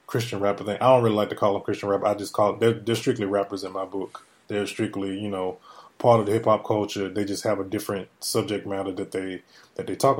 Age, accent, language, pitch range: 20-39, American, English, 100-115 Hz